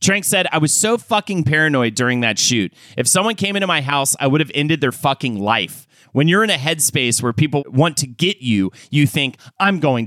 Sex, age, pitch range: male, 30-49, 125-165 Hz